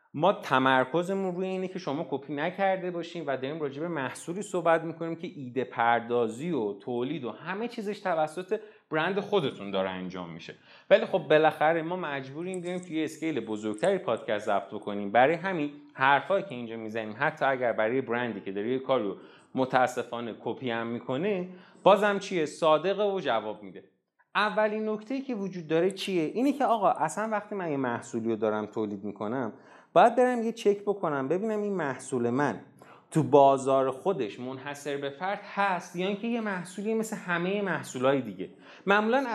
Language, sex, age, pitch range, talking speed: Persian, male, 30-49, 130-190 Hz, 165 wpm